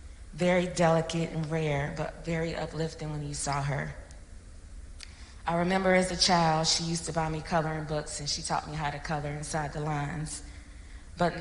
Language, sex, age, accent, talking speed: English, female, 20-39, American, 180 wpm